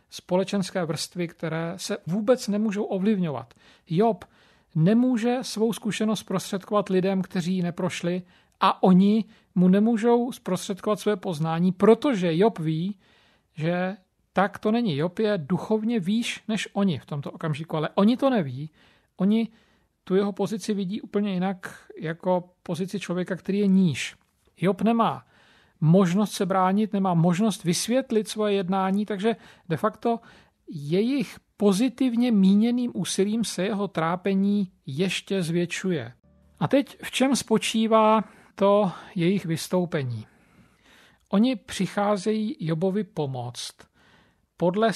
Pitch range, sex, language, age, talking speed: 175-220 Hz, male, Slovak, 40-59, 120 wpm